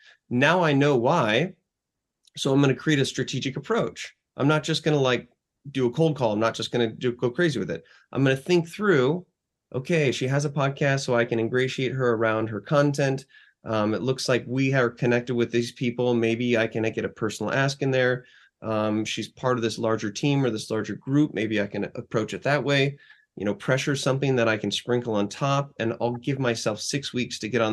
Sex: male